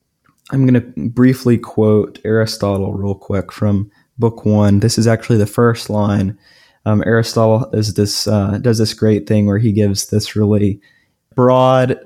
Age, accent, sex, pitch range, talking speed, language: 20-39, American, male, 105-120 Hz, 160 wpm, English